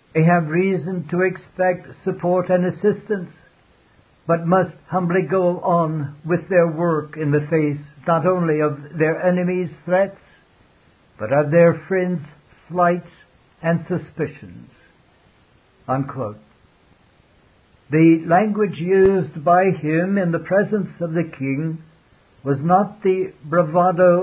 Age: 60-79